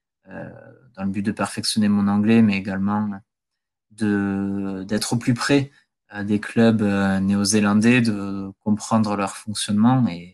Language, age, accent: French, 20-39, French